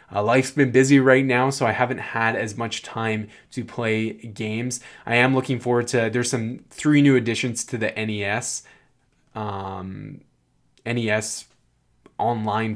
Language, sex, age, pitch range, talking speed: English, male, 20-39, 105-125 Hz, 150 wpm